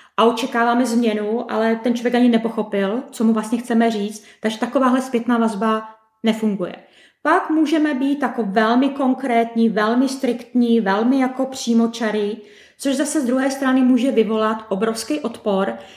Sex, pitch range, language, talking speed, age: female, 225-265 Hz, Czech, 145 wpm, 20-39